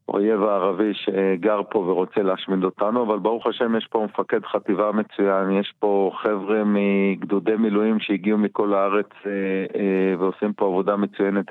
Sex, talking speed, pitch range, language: male, 140 wpm, 100-110 Hz, Hebrew